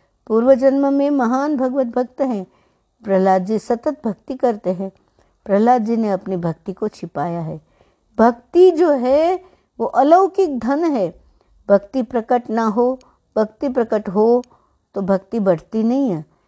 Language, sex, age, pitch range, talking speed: Hindi, female, 60-79, 190-245 Hz, 145 wpm